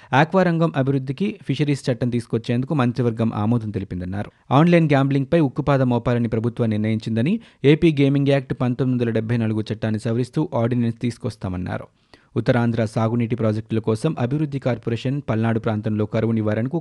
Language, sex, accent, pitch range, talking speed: Telugu, male, native, 110-135 Hz, 130 wpm